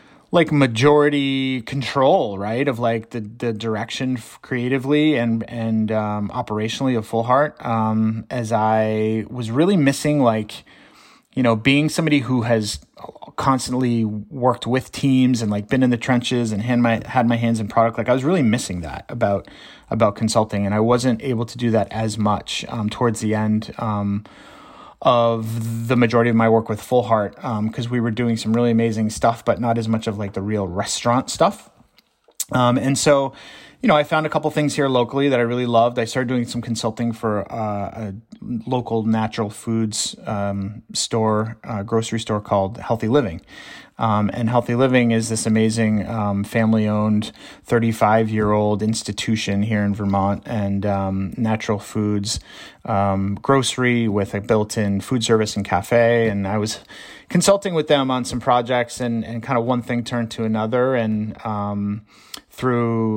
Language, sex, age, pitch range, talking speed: English, male, 30-49, 105-125 Hz, 175 wpm